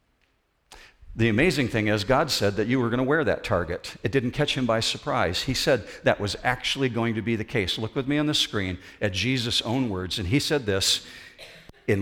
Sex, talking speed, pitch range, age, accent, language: male, 220 wpm, 100-155 Hz, 50-69, American, English